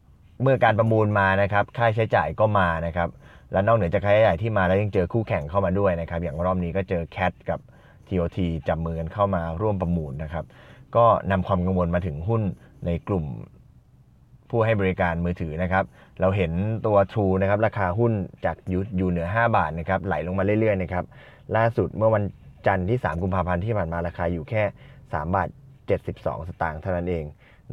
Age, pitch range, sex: 20-39, 90-115 Hz, male